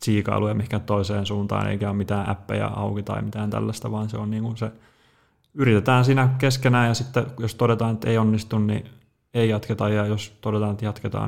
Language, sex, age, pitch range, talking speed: Finnish, male, 20-39, 105-115 Hz, 185 wpm